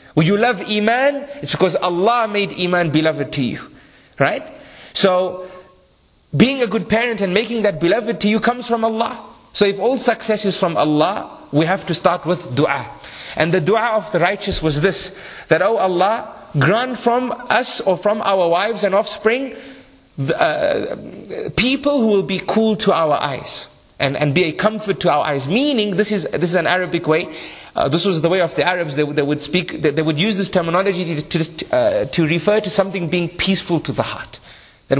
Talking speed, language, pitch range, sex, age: 200 wpm, English, 170-220 Hz, male, 30-49